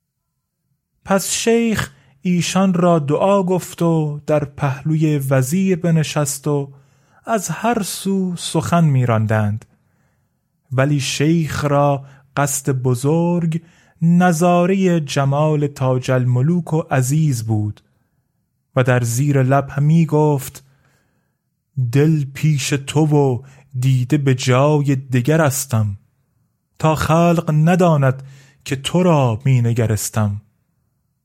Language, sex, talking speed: Persian, male, 100 wpm